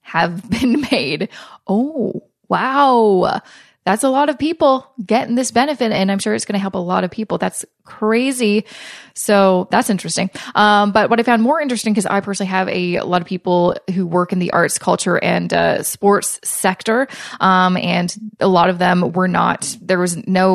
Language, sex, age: English, female, 20-39